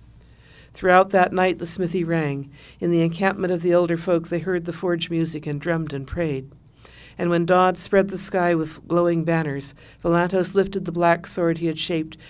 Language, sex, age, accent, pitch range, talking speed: English, female, 60-79, American, 150-175 Hz, 190 wpm